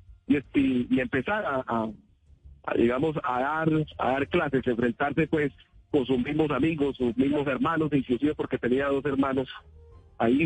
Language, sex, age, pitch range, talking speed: Spanish, male, 40-59, 125-160 Hz, 155 wpm